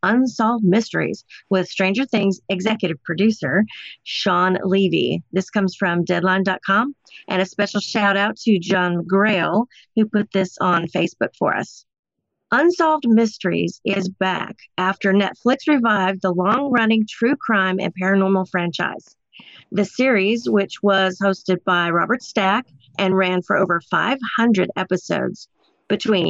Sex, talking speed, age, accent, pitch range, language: female, 130 wpm, 40-59, American, 185-225 Hz, English